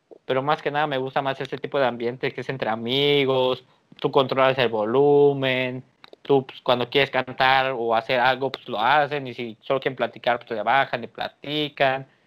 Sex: male